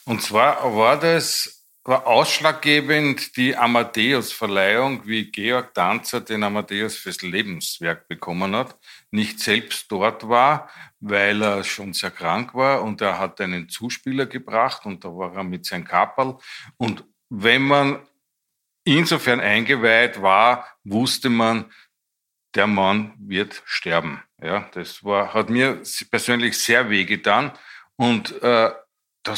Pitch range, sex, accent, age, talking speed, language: 100-125 Hz, male, Austrian, 50-69, 135 wpm, German